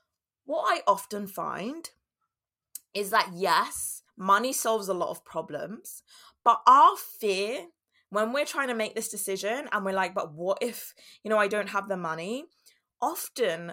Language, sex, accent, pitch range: English, female, British, 190-240 Hz